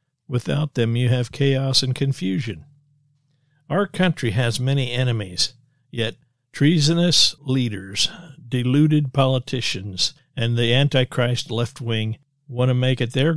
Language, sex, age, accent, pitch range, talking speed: English, male, 50-69, American, 115-140 Hz, 115 wpm